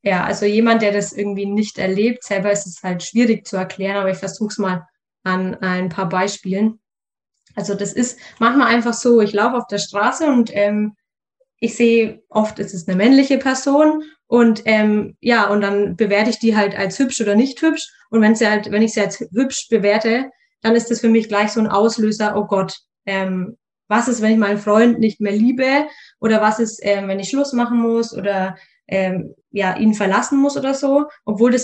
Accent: German